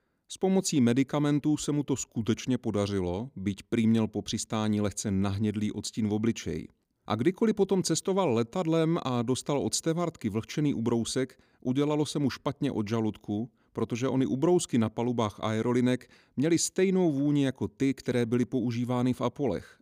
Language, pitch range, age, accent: Czech, 105-145 Hz, 30-49, native